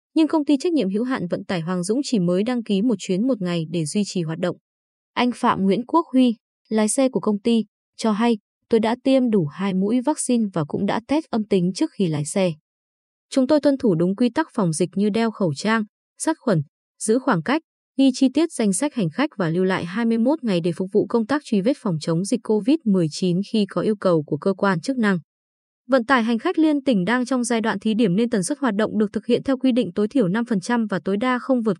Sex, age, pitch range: female, 20-39, 190-255 Hz